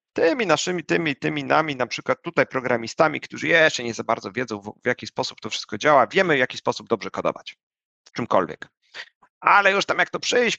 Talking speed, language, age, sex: 200 wpm, Polish, 40-59, male